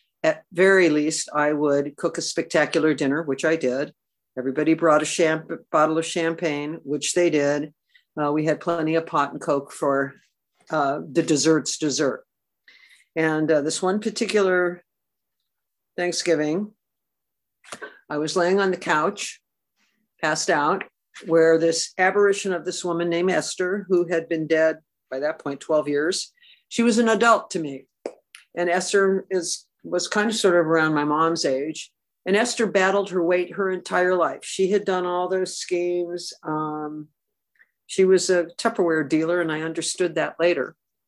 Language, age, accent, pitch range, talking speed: English, 50-69, American, 160-205 Hz, 160 wpm